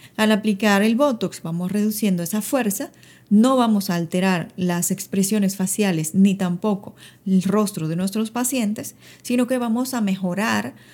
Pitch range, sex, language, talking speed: 195-235 Hz, female, Spanish, 150 wpm